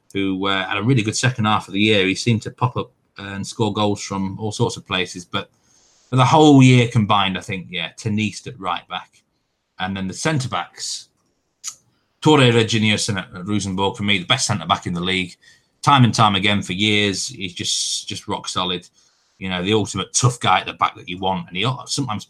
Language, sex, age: English, male, 20-39